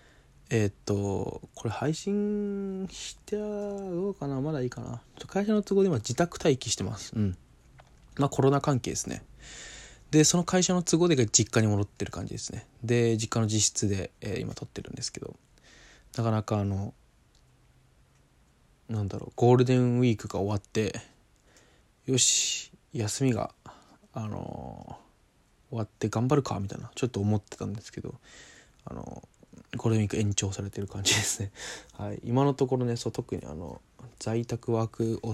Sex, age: male, 20-39